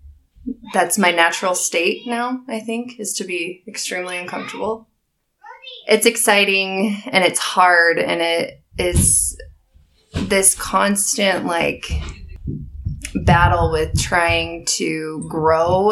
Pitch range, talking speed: 160-200 Hz, 105 wpm